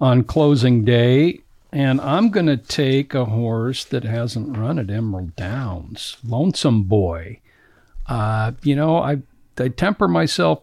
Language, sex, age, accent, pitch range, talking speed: English, male, 60-79, American, 110-130 Hz, 140 wpm